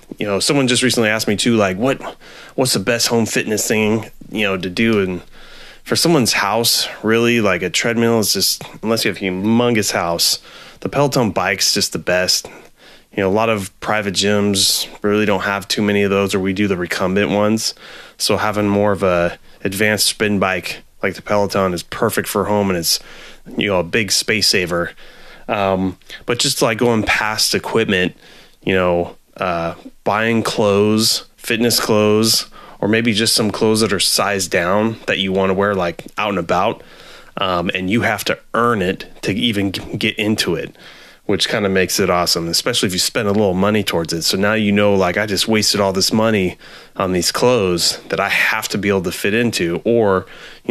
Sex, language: male, English